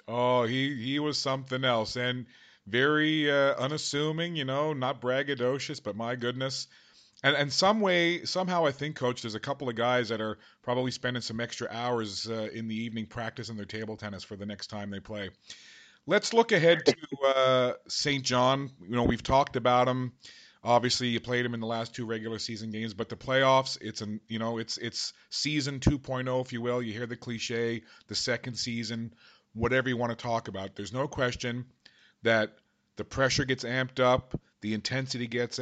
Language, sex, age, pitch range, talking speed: English, male, 40-59, 115-135 Hz, 190 wpm